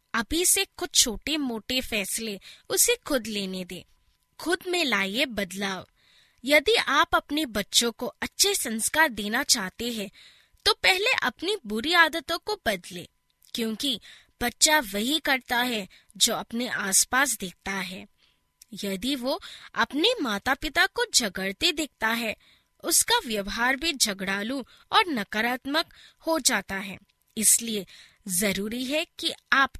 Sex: female